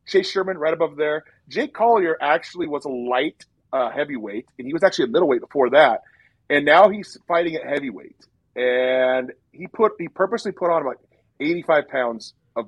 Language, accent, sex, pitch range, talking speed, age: English, American, male, 130-170 Hz, 185 wpm, 30-49